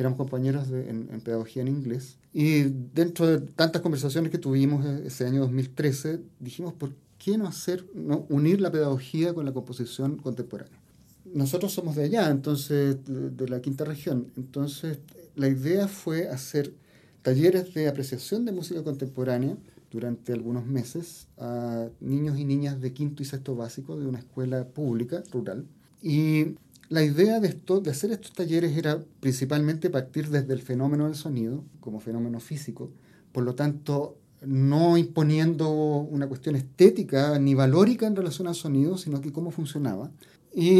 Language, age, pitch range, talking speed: Spanish, 40-59, 130-170 Hz, 160 wpm